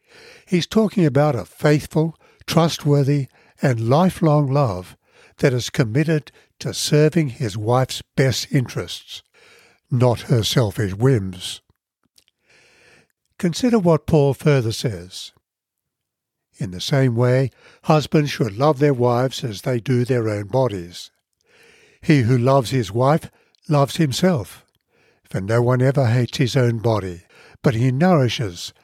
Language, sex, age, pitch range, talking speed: English, male, 60-79, 115-150 Hz, 125 wpm